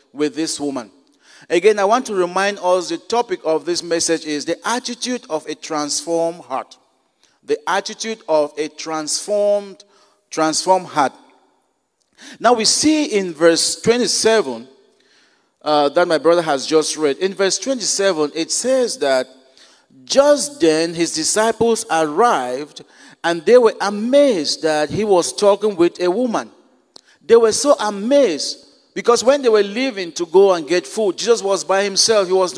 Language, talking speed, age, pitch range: English, 155 wpm, 50-69, 165-230 Hz